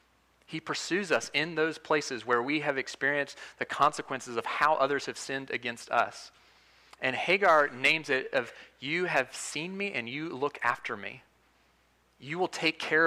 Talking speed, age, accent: 170 wpm, 30-49, American